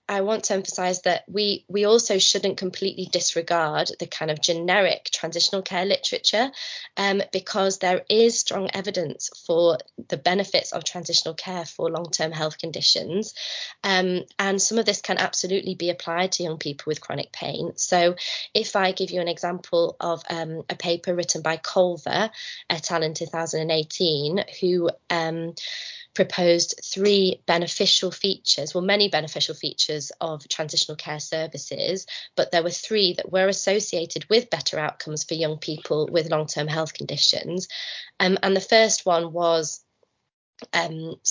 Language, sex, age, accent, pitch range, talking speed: English, female, 20-39, British, 165-195 Hz, 155 wpm